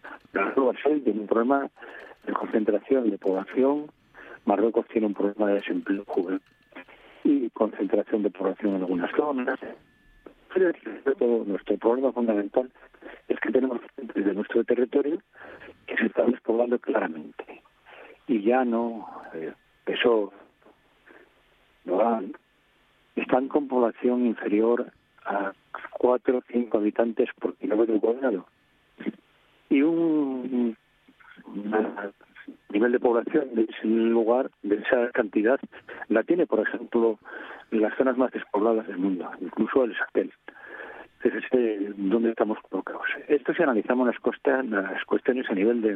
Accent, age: Spanish, 50-69